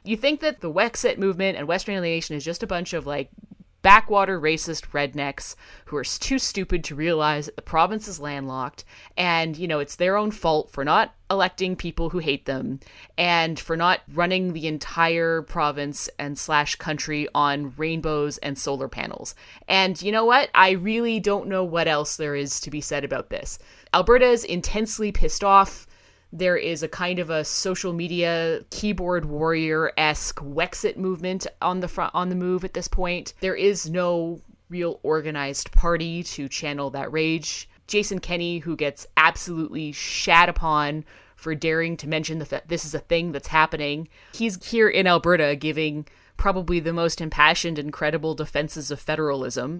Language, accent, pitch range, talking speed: English, American, 150-180 Hz, 175 wpm